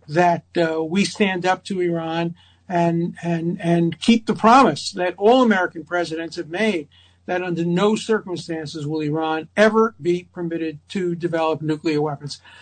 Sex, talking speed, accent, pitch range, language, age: male, 145 wpm, American, 160-195 Hz, English, 60-79